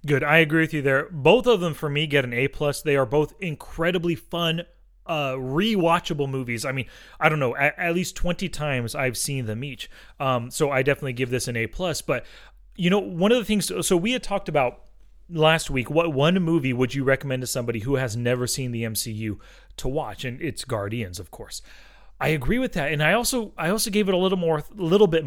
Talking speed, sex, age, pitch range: 235 wpm, male, 30-49, 130-185 Hz